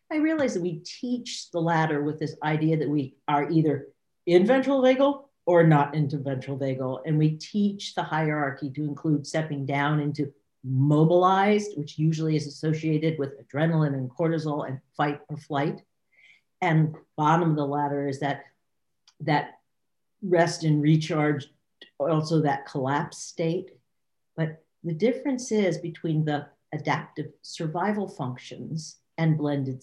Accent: American